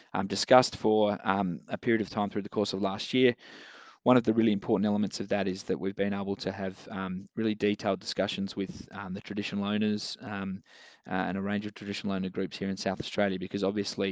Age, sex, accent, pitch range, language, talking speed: 20-39, male, Australian, 95-105 Hz, English, 225 wpm